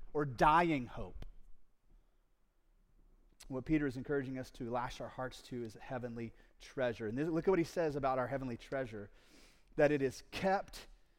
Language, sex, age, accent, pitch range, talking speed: English, male, 30-49, American, 120-170 Hz, 165 wpm